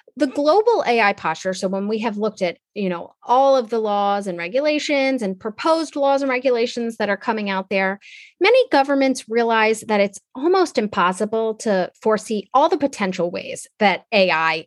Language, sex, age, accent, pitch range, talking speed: English, female, 30-49, American, 190-255 Hz, 175 wpm